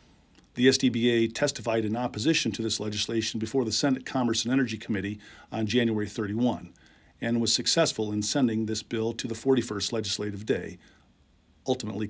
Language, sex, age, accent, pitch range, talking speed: English, male, 50-69, American, 105-130 Hz, 155 wpm